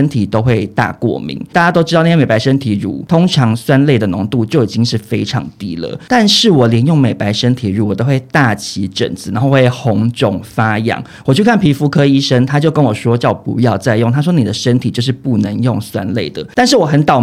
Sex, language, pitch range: male, Chinese, 120-165 Hz